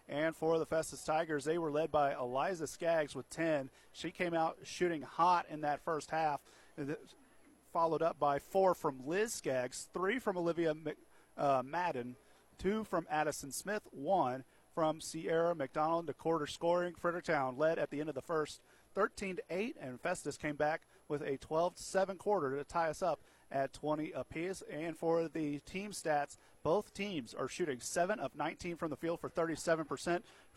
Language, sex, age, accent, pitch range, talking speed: English, male, 40-59, American, 145-170 Hz, 170 wpm